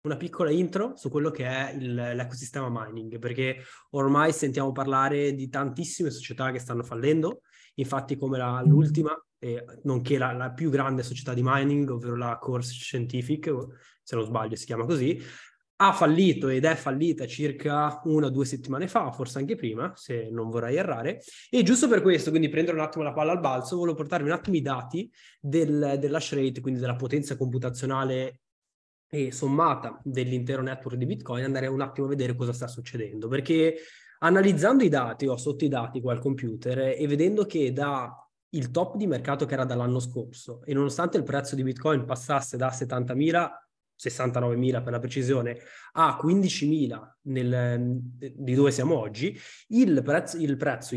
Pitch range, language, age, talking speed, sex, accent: 125-150 Hz, Italian, 20-39, 175 wpm, male, native